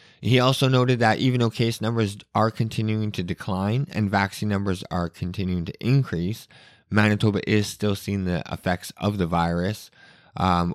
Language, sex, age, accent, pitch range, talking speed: English, male, 20-39, American, 90-110 Hz, 160 wpm